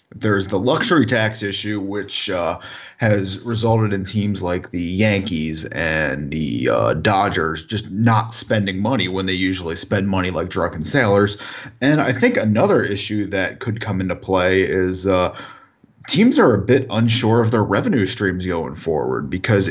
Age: 20-39